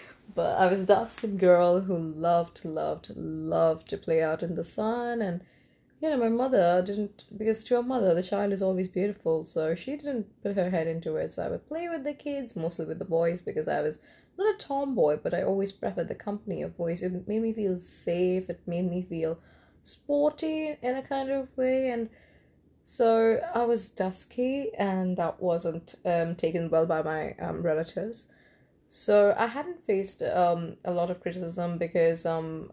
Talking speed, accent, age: 195 wpm, Indian, 20-39